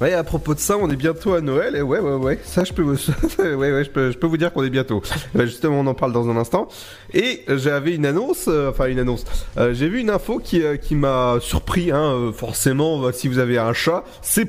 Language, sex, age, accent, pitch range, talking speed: French, male, 30-49, French, 125-170 Hz, 260 wpm